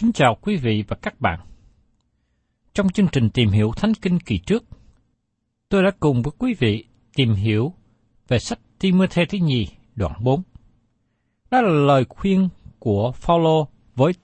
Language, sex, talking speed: Vietnamese, male, 160 wpm